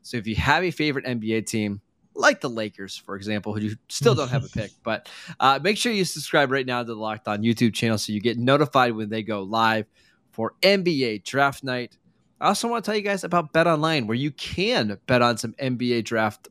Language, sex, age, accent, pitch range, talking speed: English, male, 20-39, American, 110-140 Hz, 235 wpm